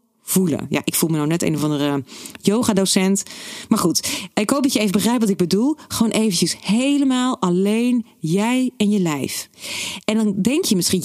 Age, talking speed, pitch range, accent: 40-59, 190 wpm, 185-235 Hz, Dutch